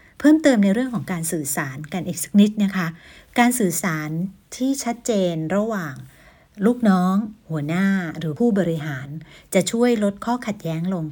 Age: 60-79